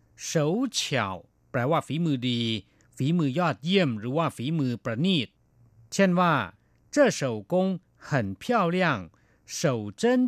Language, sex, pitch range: Thai, male, 120-180 Hz